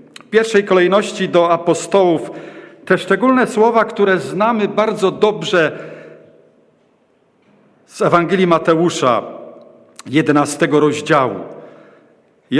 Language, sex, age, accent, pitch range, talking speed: Polish, male, 50-69, native, 175-220 Hz, 85 wpm